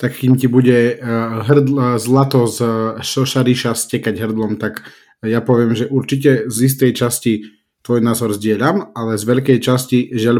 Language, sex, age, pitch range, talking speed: Slovak, male, 30-49, 110-135 Hz, 145 wpm